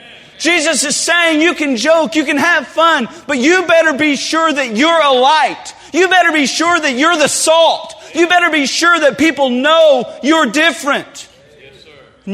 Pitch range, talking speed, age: 175-245 Hz, 180 wpm, 40-59